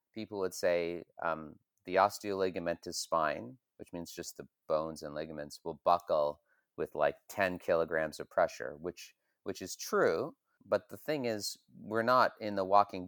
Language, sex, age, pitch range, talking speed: English, male, 30-49, 85-100 Hz, 160 wpm